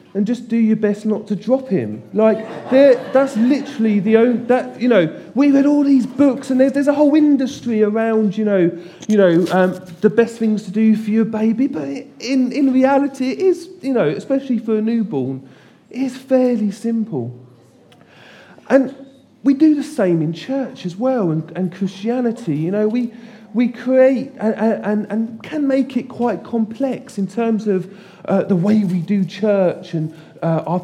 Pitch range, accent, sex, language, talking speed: 180-245 Hz, British, male, English, 175 wpm